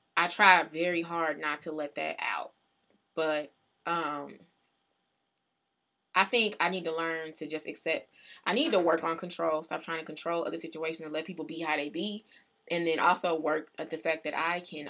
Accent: American